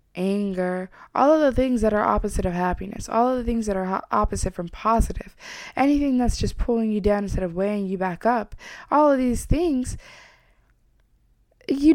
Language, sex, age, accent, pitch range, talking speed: English, female, 20-39, American, 195-255 Hz, 180 wpm